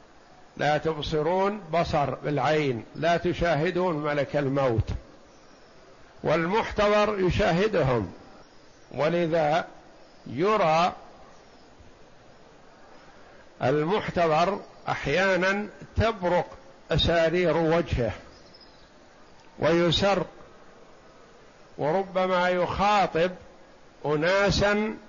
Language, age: Arabic, 60-79